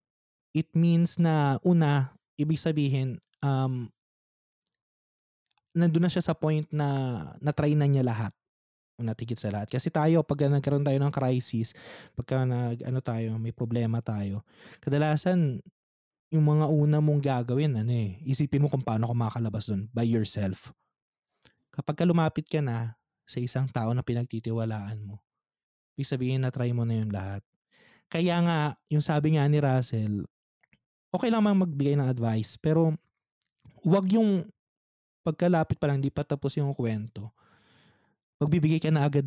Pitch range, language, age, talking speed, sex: 120-155 Hz, Filipino, 20-39, 145 wpm, male